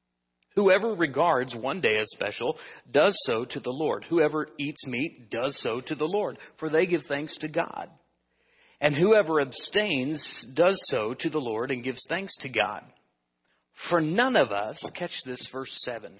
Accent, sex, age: American, male, 40-59